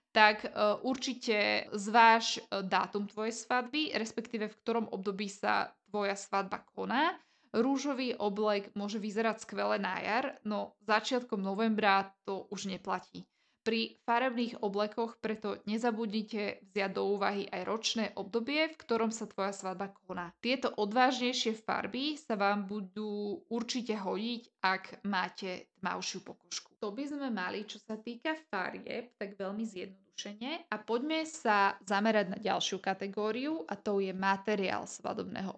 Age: 20-39